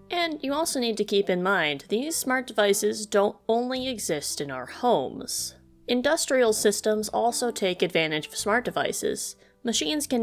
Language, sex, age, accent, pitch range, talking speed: English, female, 20-39, American, 170-245 Hz, 160 wpm